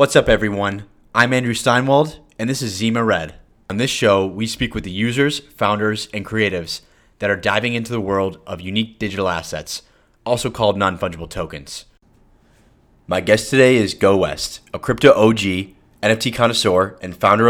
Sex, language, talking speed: male, English, 165 wpm